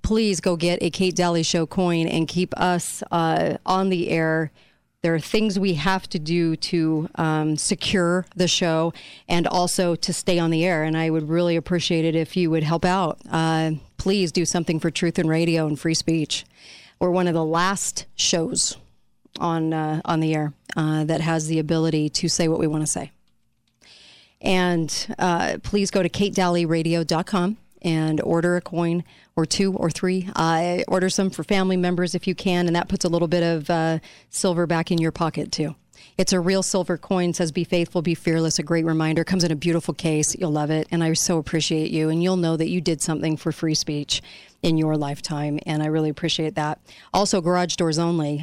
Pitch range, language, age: 160-180 Hz, English, 40-59